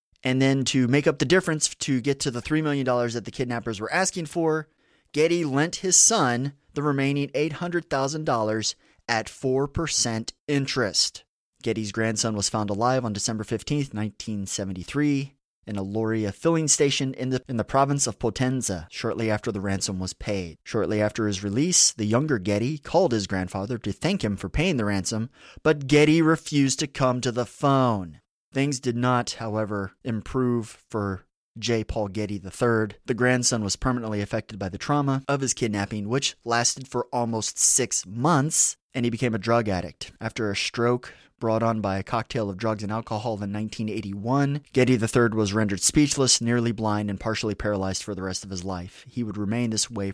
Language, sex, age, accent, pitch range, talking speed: English, male, 30-49, American, 105-135 Hz, 175 wpm